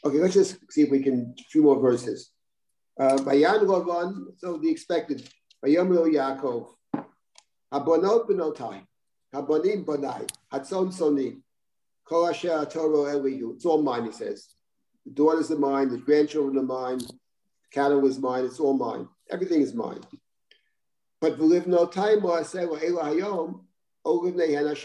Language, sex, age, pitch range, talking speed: English, male, 50-69, 140-175 Hz, 100 wpm